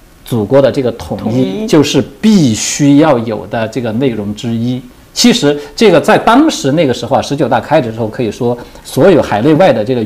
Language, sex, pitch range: Chinese, male, 115-145 Hz